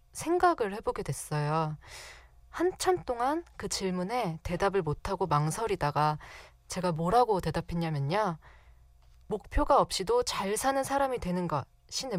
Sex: female